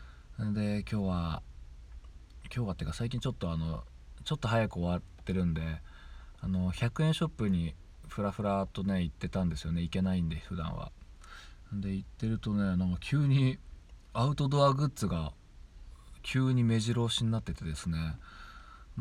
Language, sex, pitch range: Japanese, male, 80-115 Hz